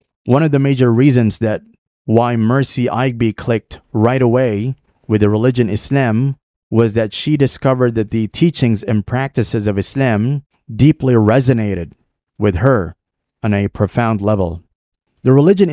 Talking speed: 140 wpm